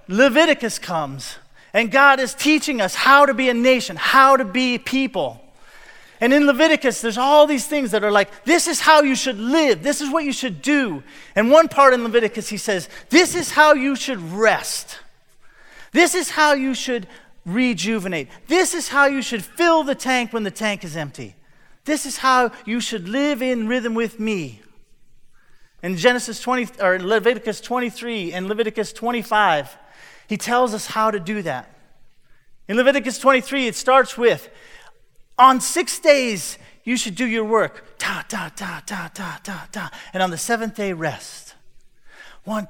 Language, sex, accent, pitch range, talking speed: English, male, American, 205-270 Hz, 170 wpm